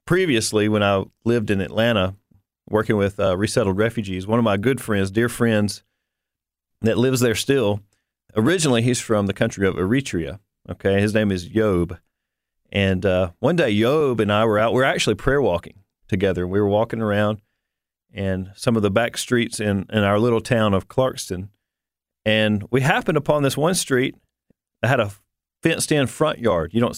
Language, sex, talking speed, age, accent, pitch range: English, male, 180 wpm, 40-59, American, 100-120 Hz